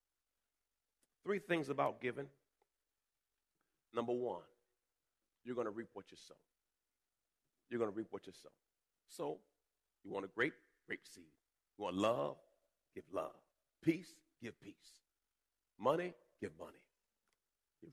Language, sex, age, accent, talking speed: English, male, 40-59, American, 125 wpm